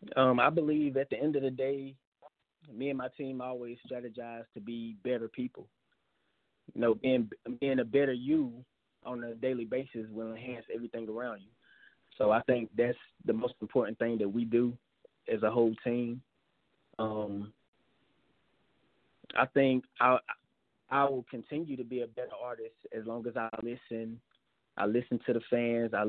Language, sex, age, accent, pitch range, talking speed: English, male, 20-39, American, 115-130 Hz, 165 wpm